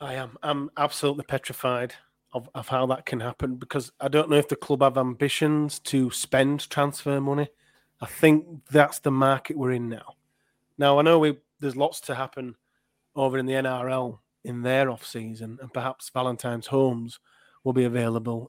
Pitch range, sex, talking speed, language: 125-150 Hz, male, 170 wpm, English